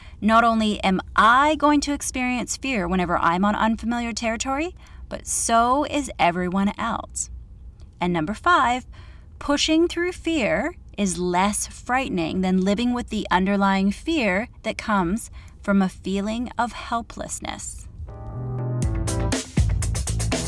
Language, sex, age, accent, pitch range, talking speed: English, female, 30-49, American, 170-240 Hz, 115 wpm